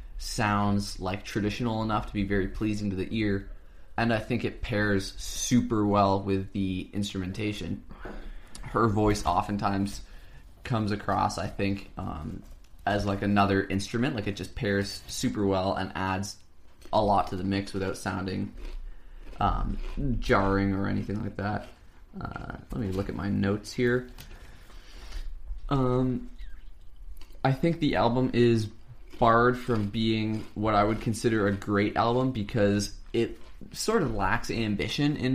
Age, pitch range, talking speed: 20-39, 95-115 Hz, 145 wpm